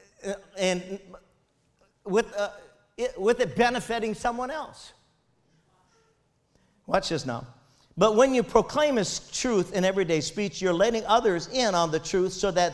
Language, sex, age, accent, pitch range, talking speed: English, male, 50-69, American, 170-230 Hz, 135 wpm